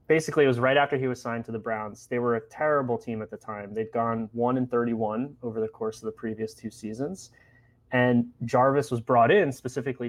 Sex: male